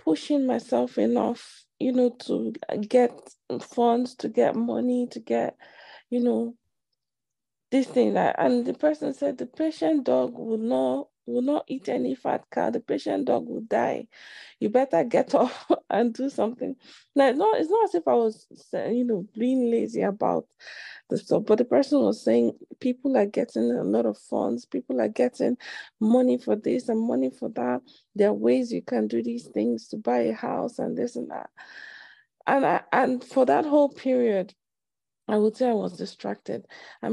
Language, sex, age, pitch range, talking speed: English, female, 20-39, 195-255 Hz, 180 wpm